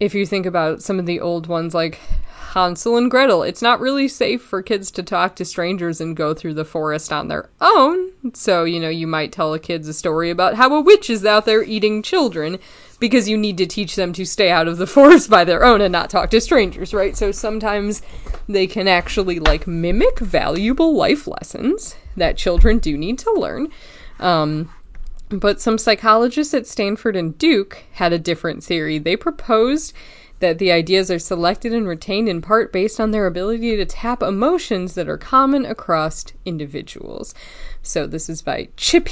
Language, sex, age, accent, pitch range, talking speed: English, female, 20-39, American, 175-235 Hz, 195 wpm